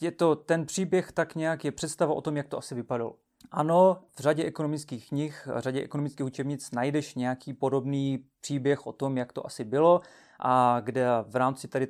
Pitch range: 130-155 Hz